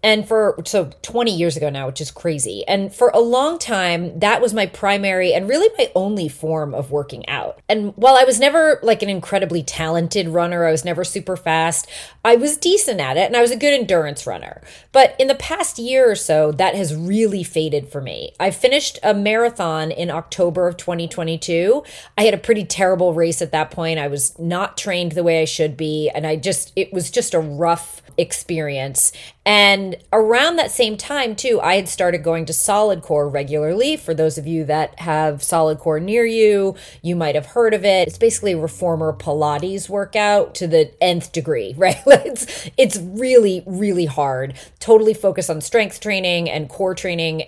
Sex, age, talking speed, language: female, 30-49, 195 wpm, English